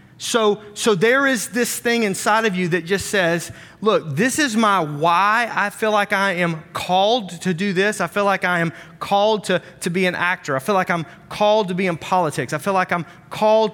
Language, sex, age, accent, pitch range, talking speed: English, male, 30-49, American, 170-205 Hz, 225 wpm